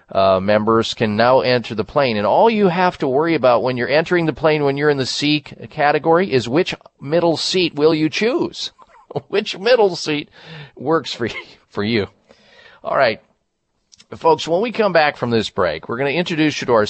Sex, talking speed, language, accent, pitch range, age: male, 200 wpm, English, American, 115-150 Hz, 40-59